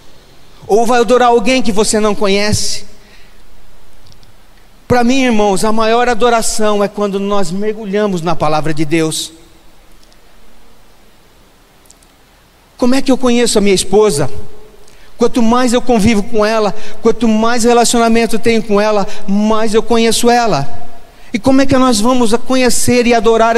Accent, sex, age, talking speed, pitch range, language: Brazilian, male, 40-59, 140 wpm, 195-230 Hz, Portuguese